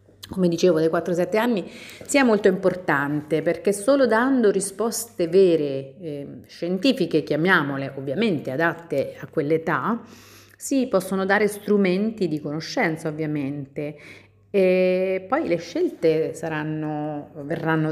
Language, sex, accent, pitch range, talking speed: Italian, female, native, 140-185 Hz, 110 wpm